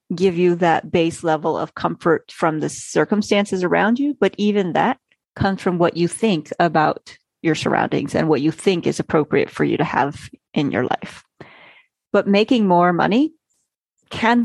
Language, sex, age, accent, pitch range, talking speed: English, female, 30-49, American, 165-225 Hz, 170 wpm